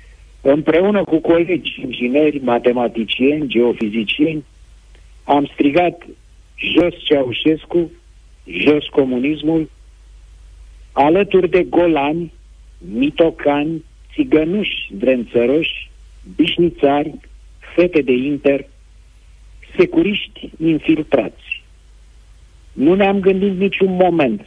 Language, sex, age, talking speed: Romanian, male, 50-69, 70 wpm